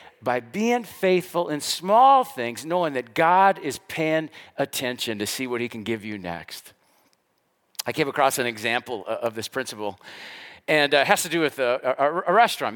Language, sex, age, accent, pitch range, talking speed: English, male, 50-69, American, 120-155 Hz, 180 wpm